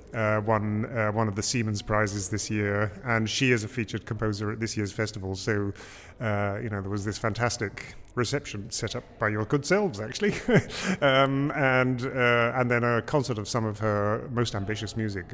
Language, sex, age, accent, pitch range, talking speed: English, male, 30-49, British, 105-125 Hz, 195 wpm